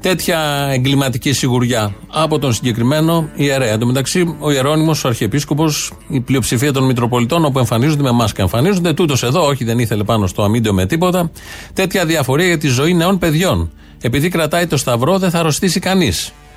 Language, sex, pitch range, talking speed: Greek, male, 120-155 Hz, 180 wpm